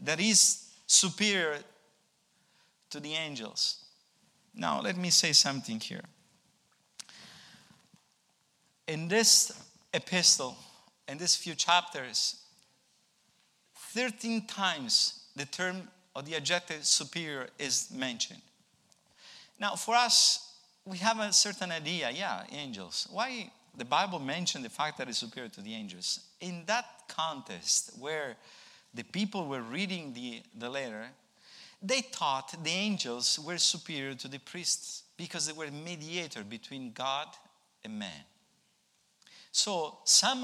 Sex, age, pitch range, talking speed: male, 50-69, 155-220 Hz, 120 wpm